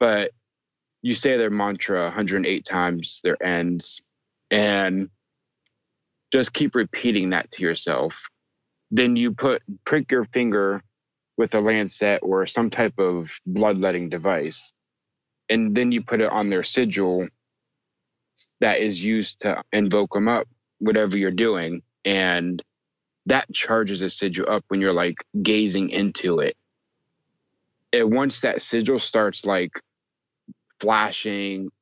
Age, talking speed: 20-39, 130 wpm